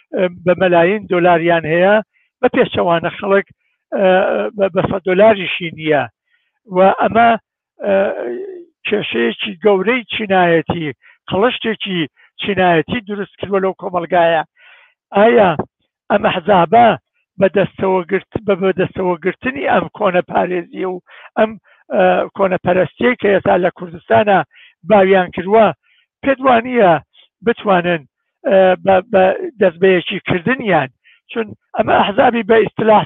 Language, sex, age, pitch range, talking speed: Persian, male, 60-79, 180-220 Hz, 90 wpm